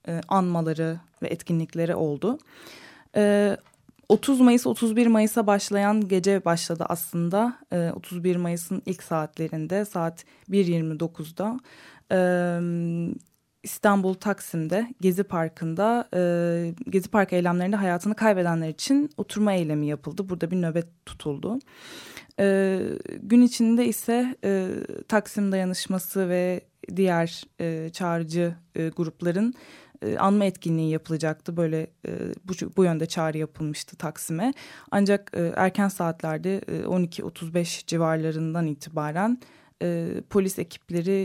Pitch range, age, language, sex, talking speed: 165-200 Hz, 10-29, Turkish, female, 90 wpm